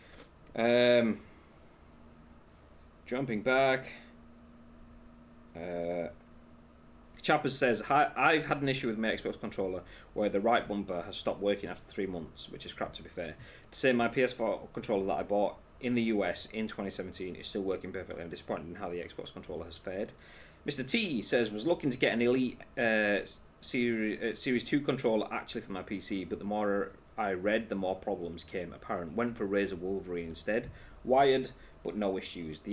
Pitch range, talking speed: 80-120 Hz, 175 wpm